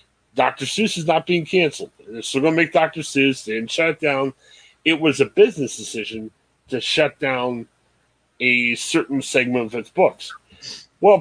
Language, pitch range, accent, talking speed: English, 120-180 Hz, American, 175 wpm